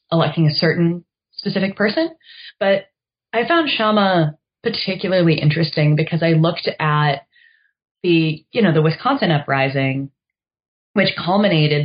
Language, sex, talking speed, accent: English, female, 115 wpm, American